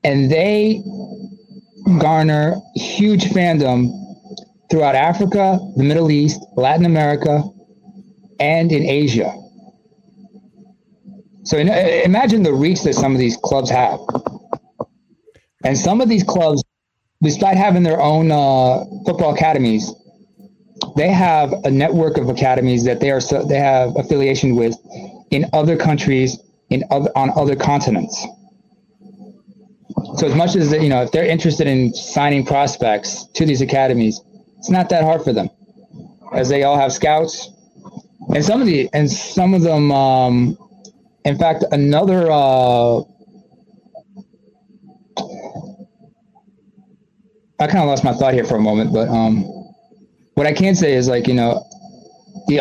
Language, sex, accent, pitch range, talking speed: English, male, American, 140-200 Hz, 140 wpm